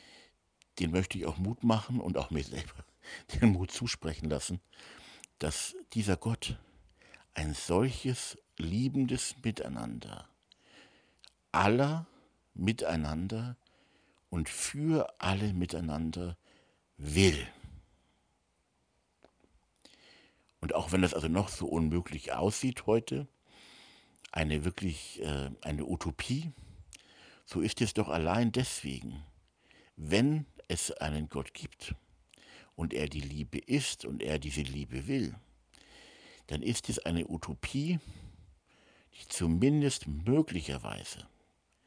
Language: German